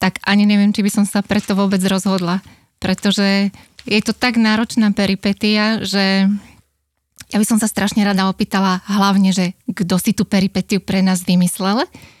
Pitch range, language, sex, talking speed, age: 195-215 Hz, Slovak, female, 160 wpm, 20-39